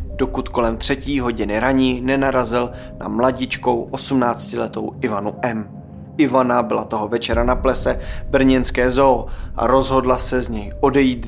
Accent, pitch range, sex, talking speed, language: native, 110-135 Hz, male, 135 wpm, Czech